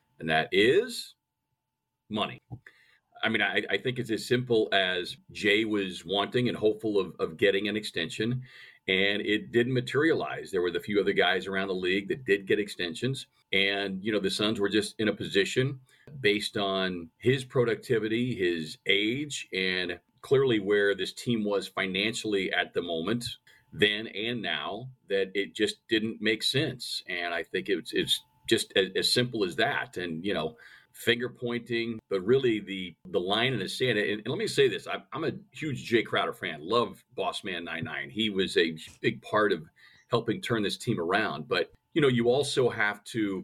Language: English